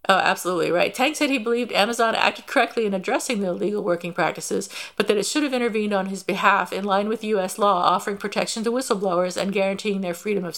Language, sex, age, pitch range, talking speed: English, female, 50-69, 190-225 Hz, 220 wpm